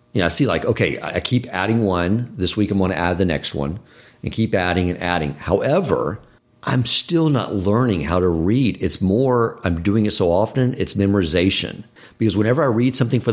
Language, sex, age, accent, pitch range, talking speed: English, male, 50-69, American, 95-125 Hz, 205 wpm